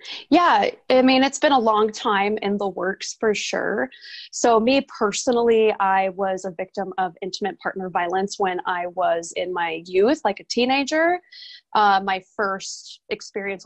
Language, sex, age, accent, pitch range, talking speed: English, female, 20-39, American, 190-225 Hz, 165 wpm